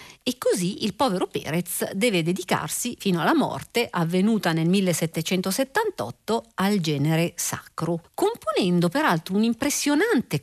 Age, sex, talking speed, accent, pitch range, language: 50-69, female, 115 wpm, native, 170-235 Hz, Italian